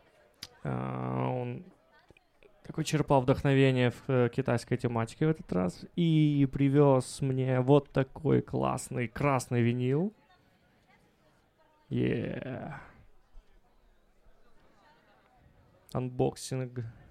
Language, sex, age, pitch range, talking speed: Ukrainian, male, 20-39, 115-140 Hz, 75 wpm